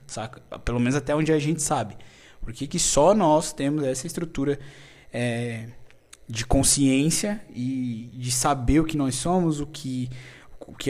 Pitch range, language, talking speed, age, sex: 125-150 Hz, Portuguese, 160 wpm, 20-39, male